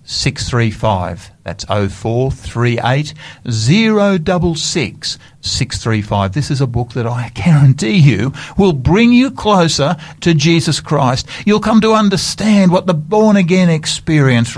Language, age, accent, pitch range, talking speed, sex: English, 50-69, Australian, 110-150 Hz, 115 wpm, male